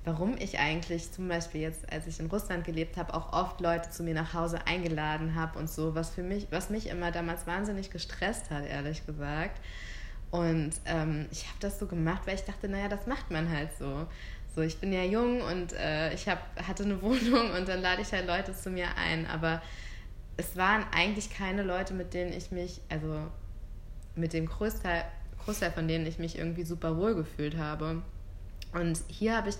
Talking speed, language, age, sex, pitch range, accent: 205 wpm, German, 20-39, female, 150-180 Hz, German